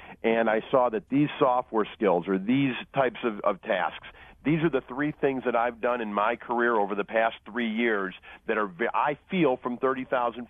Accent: American